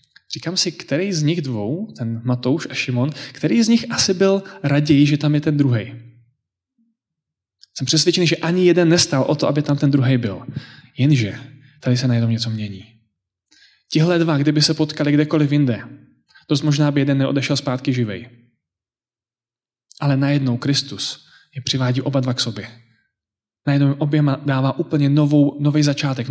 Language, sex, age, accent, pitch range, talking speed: Czech, male, 20-39, native, 120-150 Hz, 160 wpm